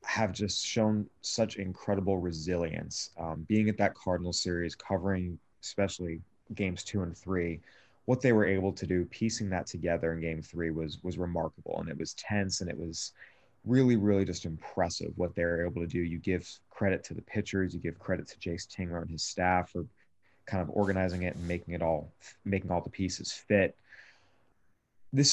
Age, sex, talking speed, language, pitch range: 30-49, male, 185 wpm, English, 85-100 Hz